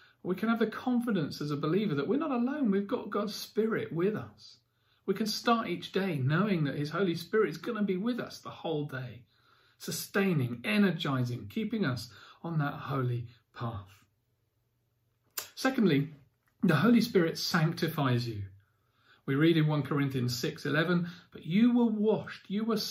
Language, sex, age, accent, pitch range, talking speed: English, male, 40-59, British, 125-200 Hz, 170 wpm